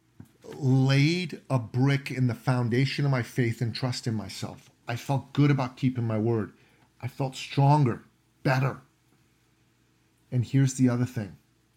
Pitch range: 115-150 Hz